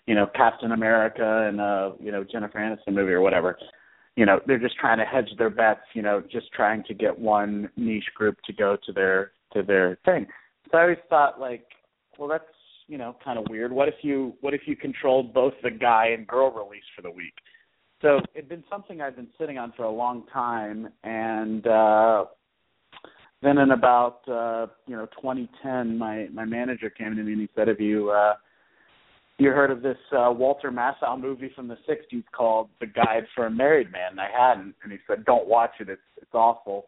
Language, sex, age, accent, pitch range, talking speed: English, male, 40-59, American, 105-130 Hz, 210 wpm